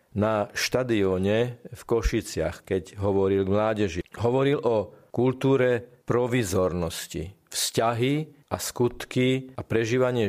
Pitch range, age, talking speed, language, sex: 105-125 Hz, 40-59, 100 wpm, Slovak, male